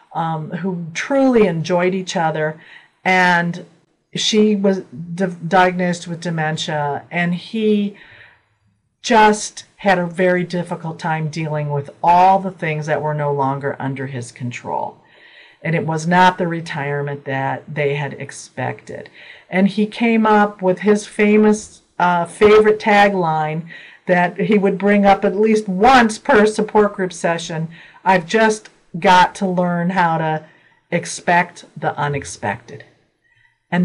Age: 50-69